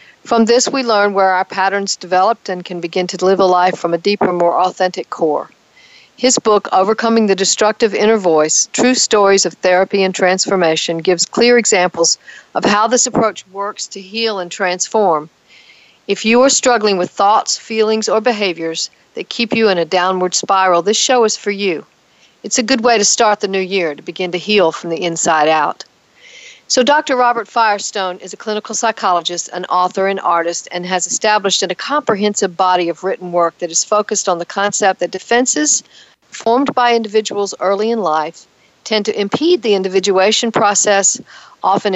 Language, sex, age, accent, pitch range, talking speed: English, female, 50-69, American, 180-220 Hz, 180 wpm